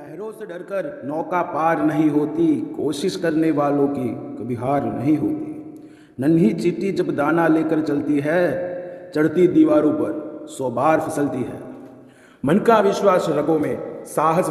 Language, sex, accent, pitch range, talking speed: Hindi, male, native, 160-205 Hz, 140 wpm